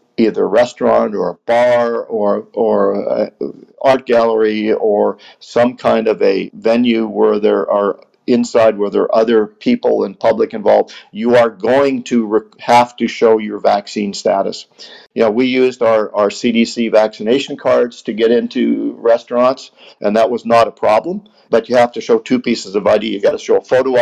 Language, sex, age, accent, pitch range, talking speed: English, male, 50-69, American, 110-125 Hz, 185 wpm